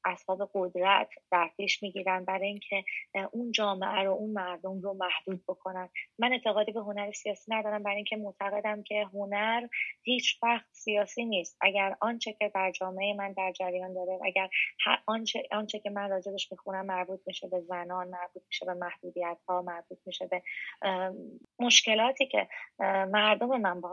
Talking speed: 155 wpm